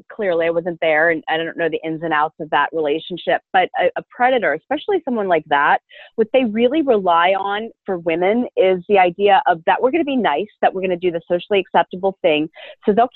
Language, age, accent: English, 30-49, American